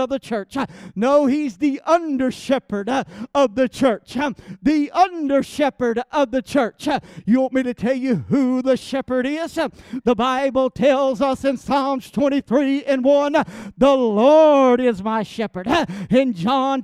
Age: 50-69